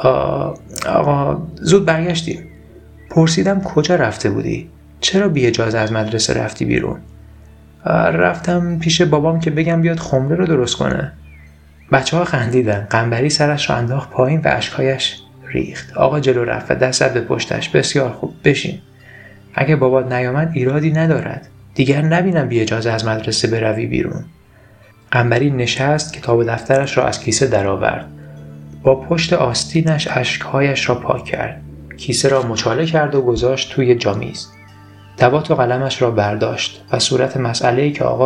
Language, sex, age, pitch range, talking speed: Persian, male, 30-49, 110-145 Hz, 145 wpm